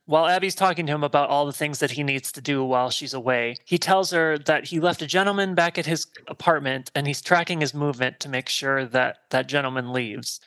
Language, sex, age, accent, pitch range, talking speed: English, male, 30-49, American, 135-170 Hz, 235 wpm